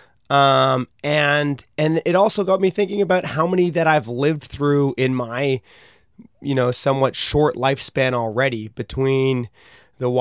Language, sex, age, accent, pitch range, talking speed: English, male, 30-49, American, 125-145 Hz, 145 wpm